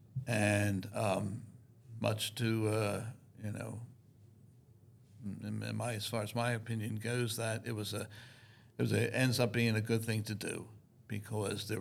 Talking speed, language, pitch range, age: 165 wpm, English, 110-130 Hz, 60-79